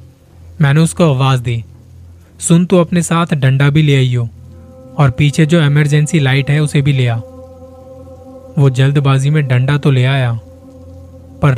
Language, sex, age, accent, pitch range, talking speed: Hindi, male, 20-39, native, 120-150 Hz, 160 wpm